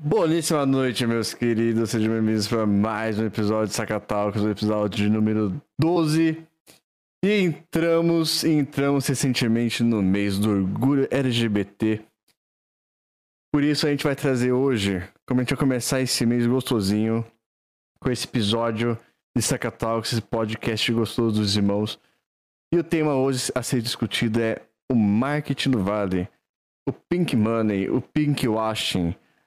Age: 20-39